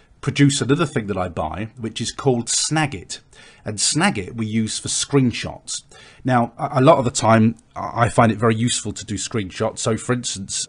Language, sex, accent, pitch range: English, male, British, 110-130 Hz